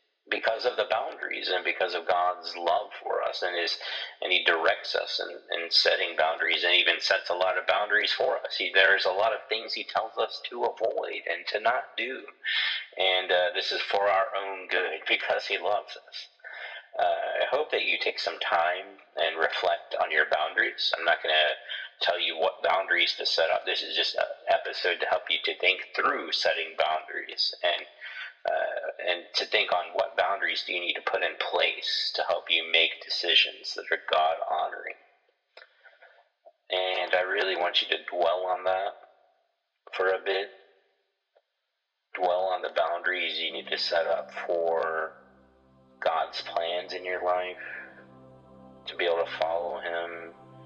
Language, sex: English, male